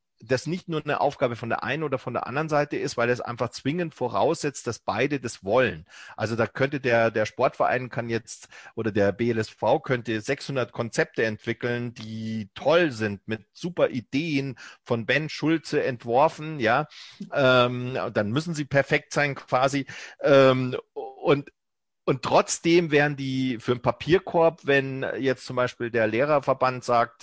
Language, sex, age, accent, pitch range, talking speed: German, male, 40-59, German, 115-140 Hz, 160 wpm